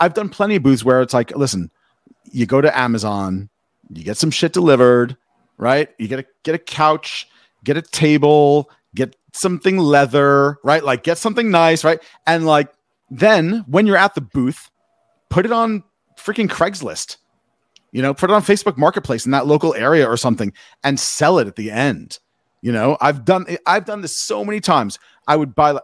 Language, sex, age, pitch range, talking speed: English, male, 40-59, 130-170 Hz, 190 wpm